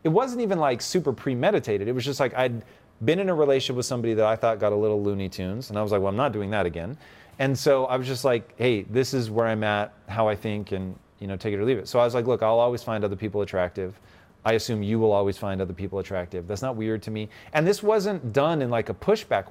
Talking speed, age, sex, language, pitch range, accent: 280 wpm, 30-49, male, English, 105-145 Hz, American